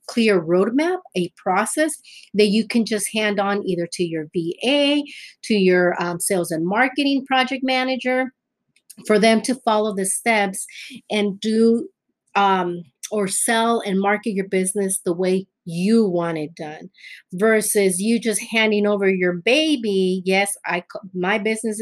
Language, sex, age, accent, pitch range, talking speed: English, female, 30-49, American, 185-225 Hz, 150 wpm